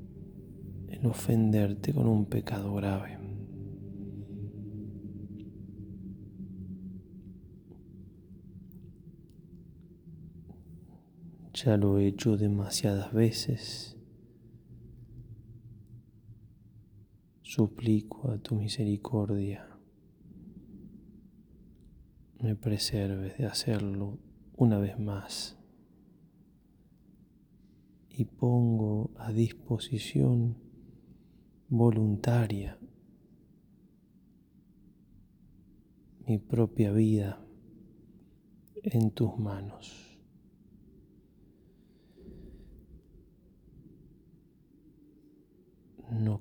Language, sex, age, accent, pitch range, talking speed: Spanish, male, 20-39, Argentinian, 100-115 Hz, 45 wpm